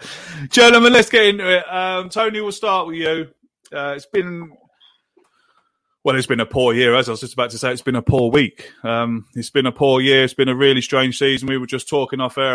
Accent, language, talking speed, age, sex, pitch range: British, English, 240 wpm, 20-39, male, 115-175 Hz